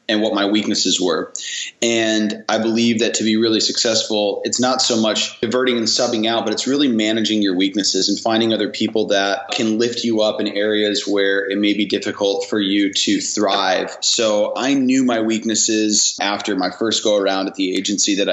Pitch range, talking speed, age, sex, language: 100-115 Hz, 200 wpm, 20-39, male, English